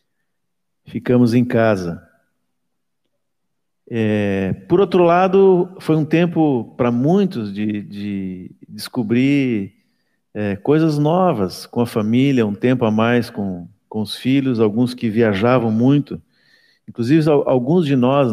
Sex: male